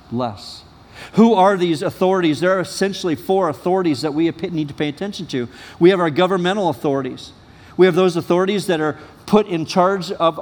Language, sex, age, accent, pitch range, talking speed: English, male, 50-69, American, 155-190 Hz, 185 wpm